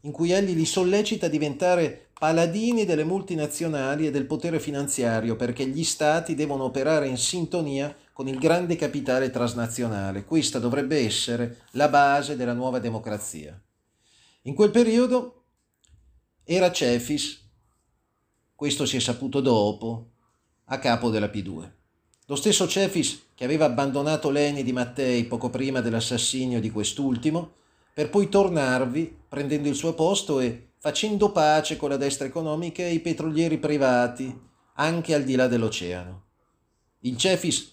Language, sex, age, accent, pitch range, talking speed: Italian, male, 30-49, native, 125-165 Hz, 140 wpm